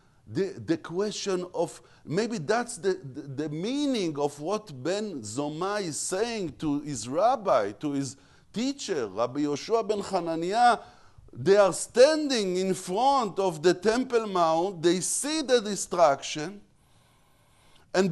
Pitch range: 145-220 Hz